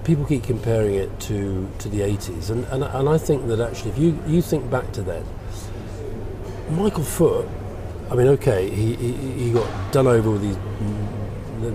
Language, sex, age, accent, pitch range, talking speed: English, male, 40-59, British, 100-130 Hz, 185 wpm